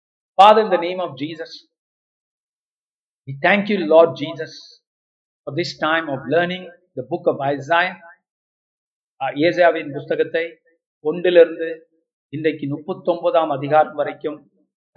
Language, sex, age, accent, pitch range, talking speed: Tamil, male, 50-69, native, 150-175 Hz, 130 wpm